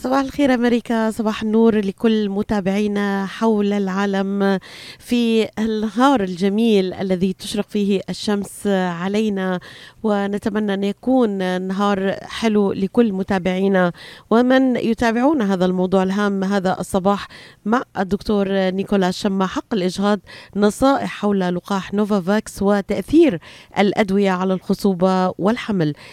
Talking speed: 105 wpm